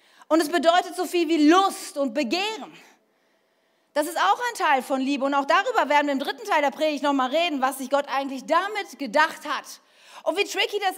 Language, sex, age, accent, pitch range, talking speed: German, female, 40-59, German, 245-315 Hz, 220 wpm